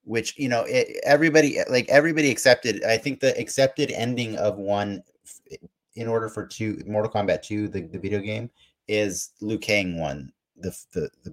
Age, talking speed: 30-49, 180 wpm